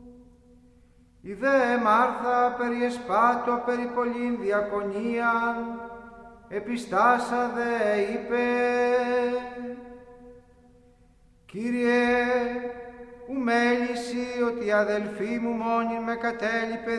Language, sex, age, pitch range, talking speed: Greek, male, 40-59, 230-245 Hz, 65 wpm